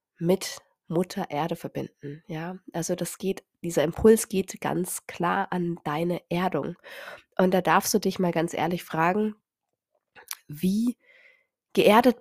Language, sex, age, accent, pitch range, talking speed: German, female, 30-49, German, 170-215 Hz, 135 wpm